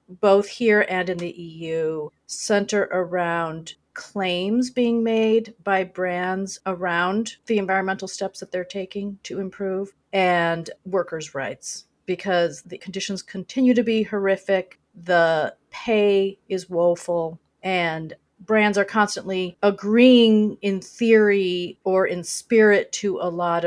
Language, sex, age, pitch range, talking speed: English, female, 40-59, 170-200 Hz, 125 wpm